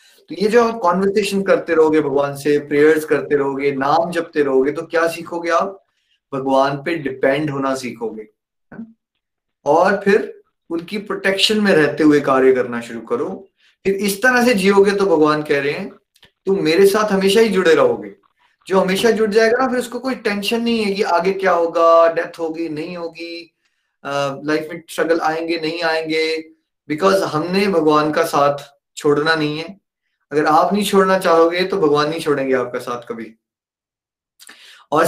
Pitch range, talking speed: 145-195 Hz, 165 wpm